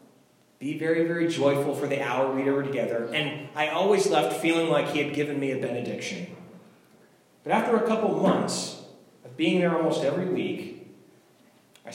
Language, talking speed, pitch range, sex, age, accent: English, 170 wpm, 120-155 Hz, male, 30-49, American